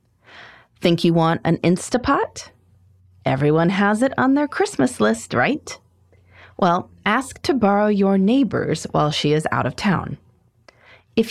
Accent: American